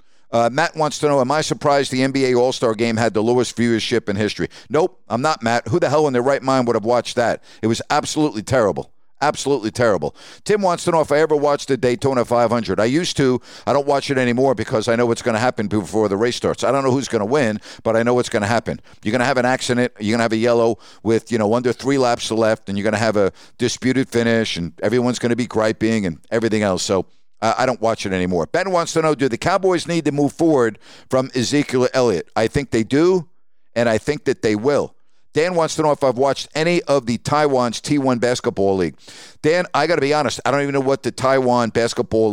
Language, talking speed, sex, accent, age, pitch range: English, 255 wpm, male, American, 50-69, 115-145 Hz